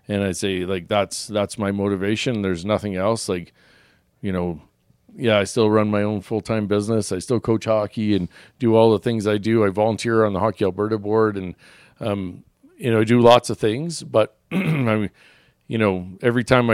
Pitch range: 95-115 Hz